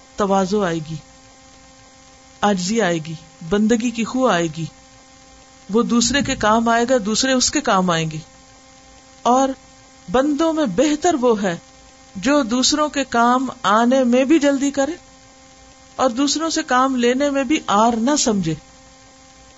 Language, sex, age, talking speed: Urdu, female, 50-69, 145 wpm